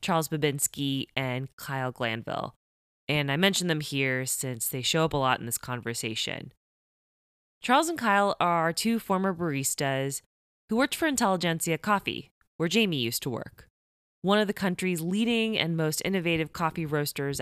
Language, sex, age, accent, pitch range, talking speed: English, female, 20-39, American, 140-195 Hz, 160 wpm